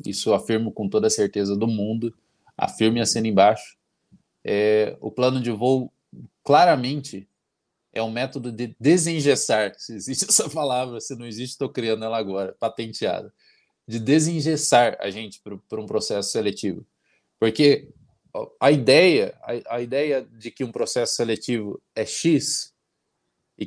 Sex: male